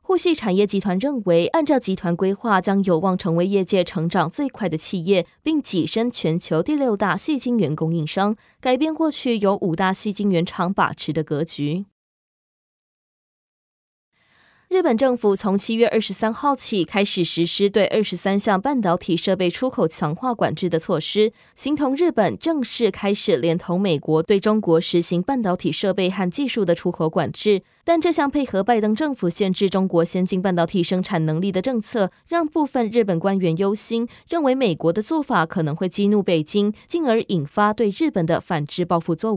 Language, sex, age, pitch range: Chinese, female, 20-39, 175-230 Hz